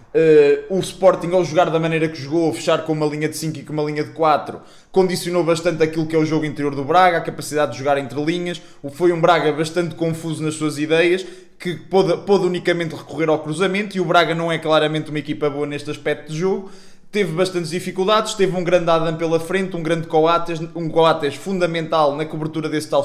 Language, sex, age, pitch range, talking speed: Portuguese, male, 20-39, 150-180 Hz, 215 wpm